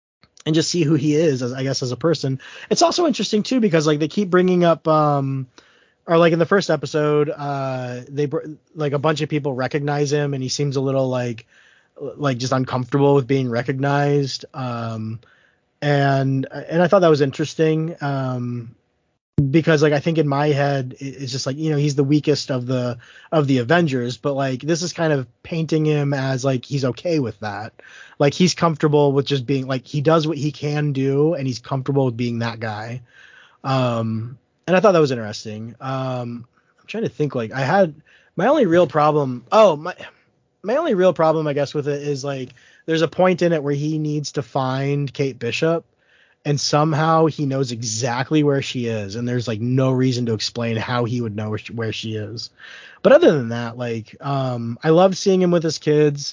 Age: 20-39